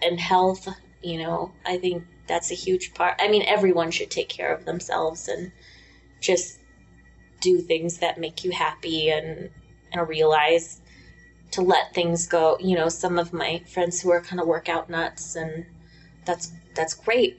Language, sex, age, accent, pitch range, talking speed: English, female, 20-39, American, 160-180 Hz, 170 wpm